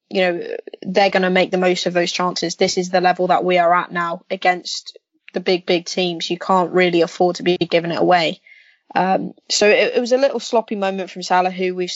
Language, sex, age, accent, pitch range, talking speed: English, female, 20-39, British, 180-190 Hz, 235 wpm